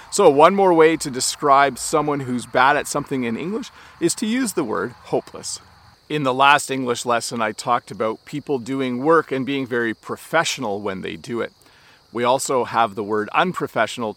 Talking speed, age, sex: 185 wpm, 40-59, male